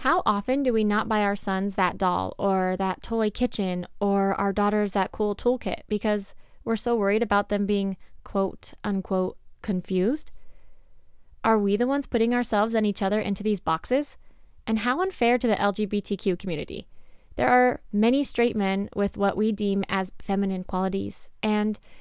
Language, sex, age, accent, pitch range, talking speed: English, female, 10-29, American, 195-235 Hz, 170 wpm